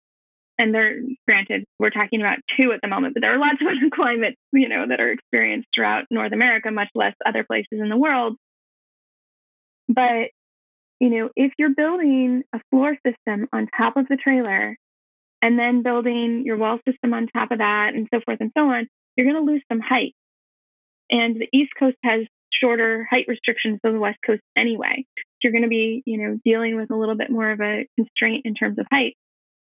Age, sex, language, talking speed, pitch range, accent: 10-29, female, English, 205 wpm, 220-255 Hz, American